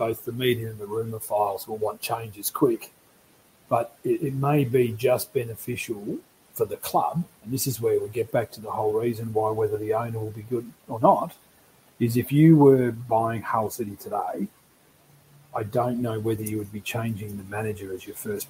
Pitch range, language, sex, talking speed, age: 110-135 Hz, English, male, 200 wpm, 40-59